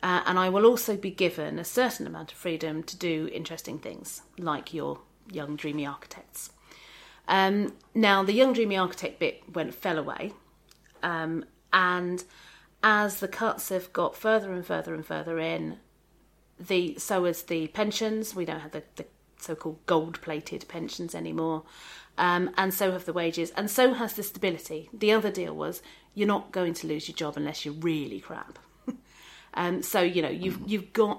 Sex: female